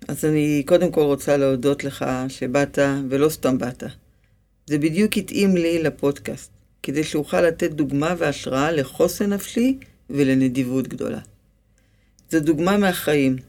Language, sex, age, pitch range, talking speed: Hebrew, female, 50-69, 130-170 Hz, 125 wpm